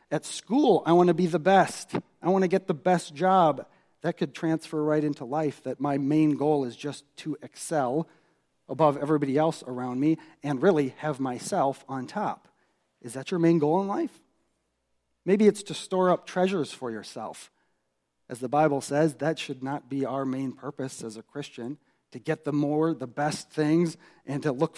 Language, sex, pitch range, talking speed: English, male, 130-160 Hz, 190 wpm